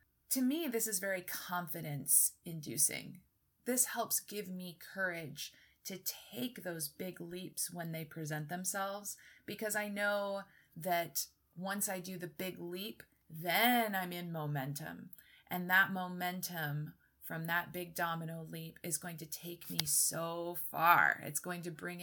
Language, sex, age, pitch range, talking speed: English, female, 30-49, 165-215 Hz, 145 wpm